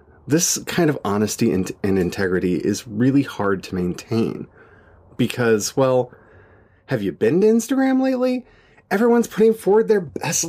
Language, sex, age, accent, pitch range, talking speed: English, male, 30-49, American, 115-180 Hz, 145 wpm